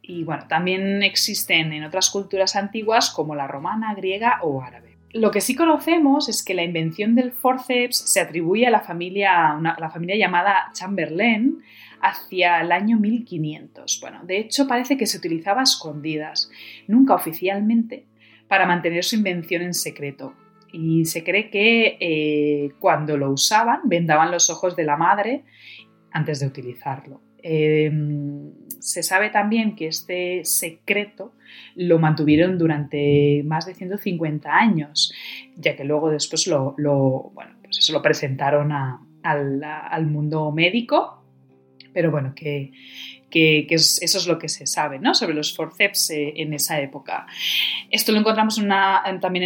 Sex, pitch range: female, 150-200 Hz